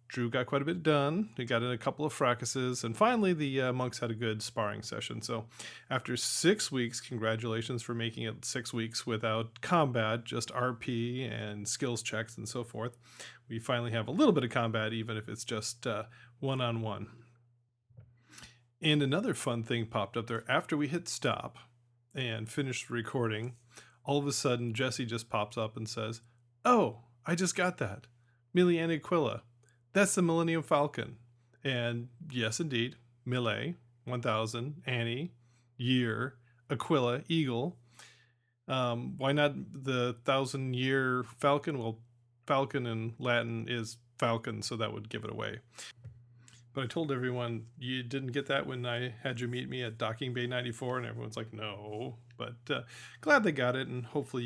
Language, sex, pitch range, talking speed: English, male, 115-130 Hz, 165 wpm